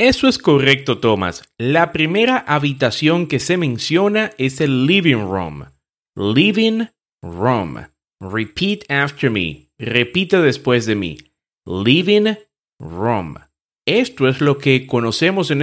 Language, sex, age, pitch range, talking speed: Spanish, male, 30-49, 115-185 Hz, 120 wpm